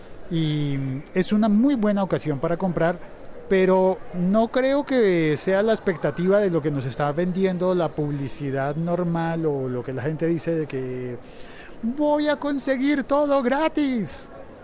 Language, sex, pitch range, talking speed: Spanish, male, 130-180 Hz, 150 wpm